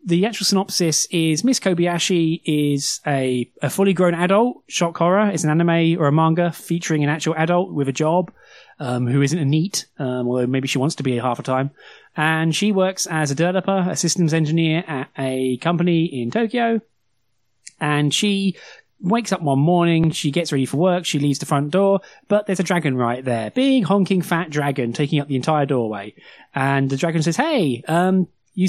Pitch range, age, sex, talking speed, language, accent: 135-180 Hz, 30-49, male, 195 wpm, English, British